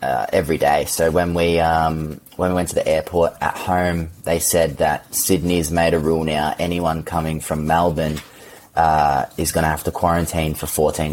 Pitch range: 75-85 Hz